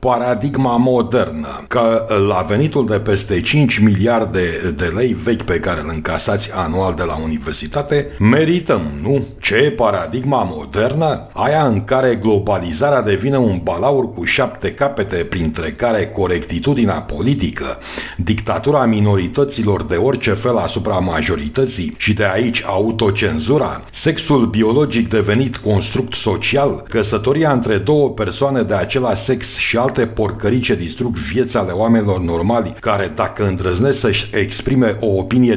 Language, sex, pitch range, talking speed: Romanian, male, 100-125 Hz, 135 wpm